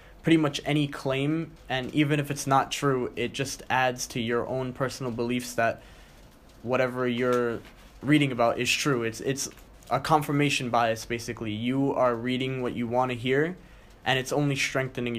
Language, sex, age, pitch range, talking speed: English, male, 20-39, 120-140 Hz, 175 wpm